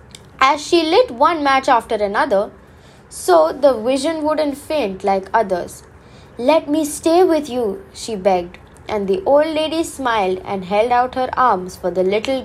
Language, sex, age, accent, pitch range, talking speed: English, female, 20-39, Indian, 200-280 Hz, 165 wpm